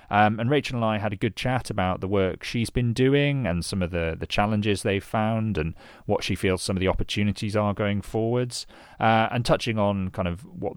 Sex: male